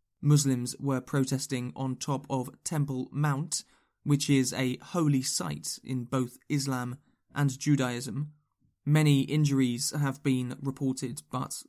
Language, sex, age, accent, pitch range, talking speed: English, male, 20-39, British, 130-150 Hz, 125 wpm